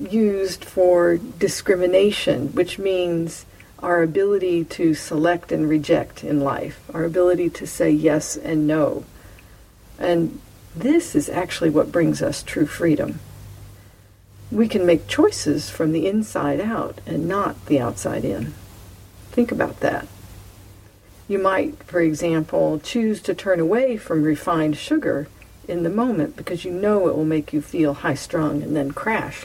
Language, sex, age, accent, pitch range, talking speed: English, female, 50-69, American, 150-195 Hz, 145 wpm